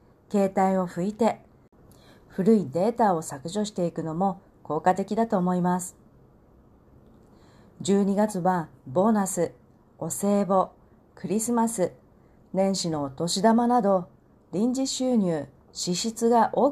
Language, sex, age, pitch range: Japanese, female, 40-59, 175-225 Hz